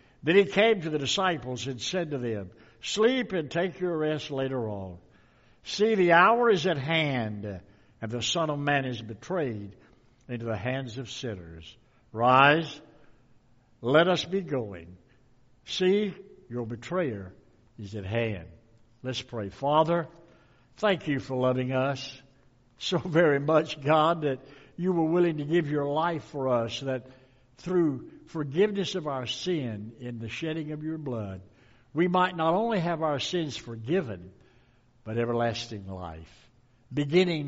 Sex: male